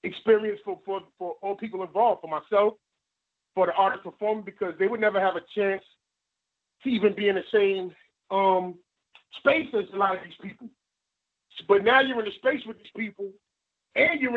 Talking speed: 190 wpm